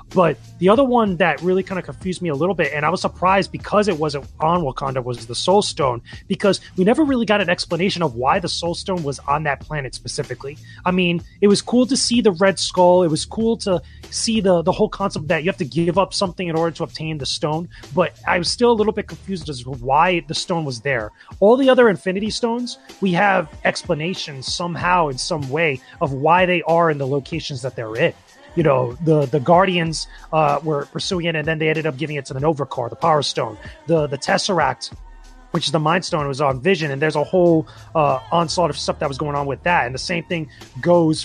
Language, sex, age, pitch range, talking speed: English, male, 30-49, 145-185 Hz, 240 wpm